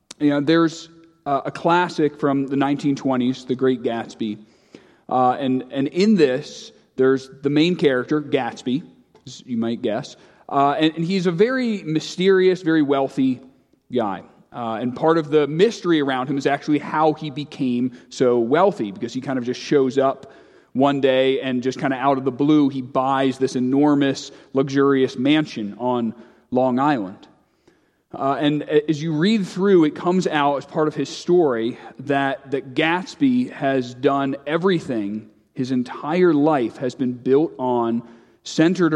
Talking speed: 155 wpm